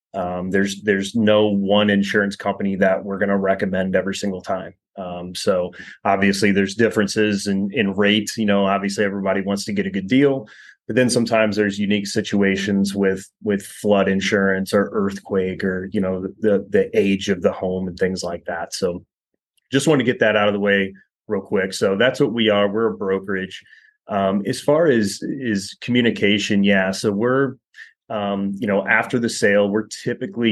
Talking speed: 185 wpm